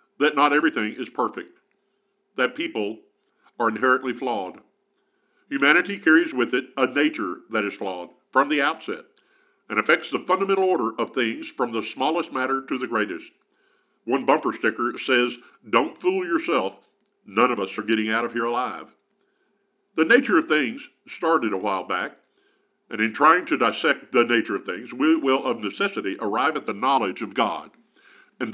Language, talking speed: English, 170 wpm